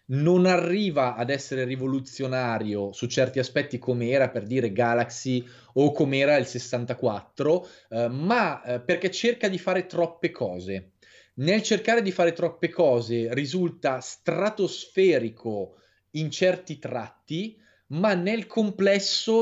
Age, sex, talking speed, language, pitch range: 20-39, male, 125 wpm, Italian, 120-160 Hz